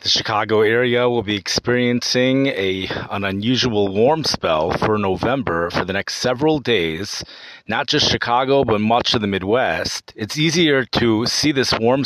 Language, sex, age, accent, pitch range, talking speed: English, male, 30-49, American, 105-130 Hz, 160 wpm